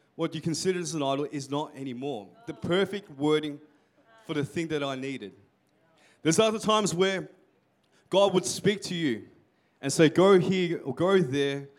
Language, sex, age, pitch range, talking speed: English, male, 20-39, 140-170 Hz, 175 wpm